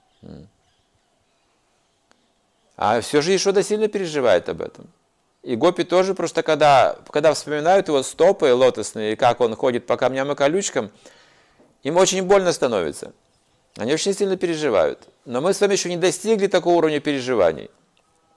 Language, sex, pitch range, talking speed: Russian, male, 140-180 Hz, 145 wpm